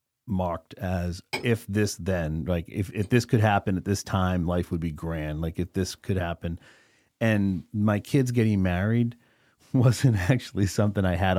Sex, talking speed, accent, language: male, 175 wpm, American, English